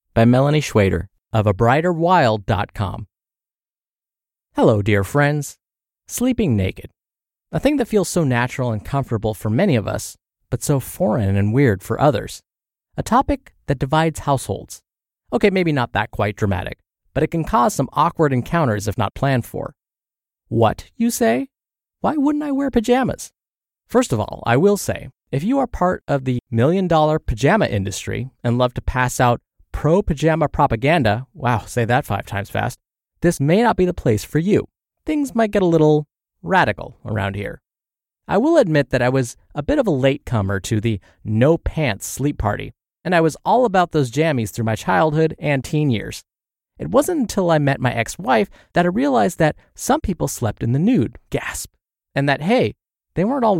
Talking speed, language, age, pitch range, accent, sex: 175 wpm, English, 20-39, 110-170 Hz, American, male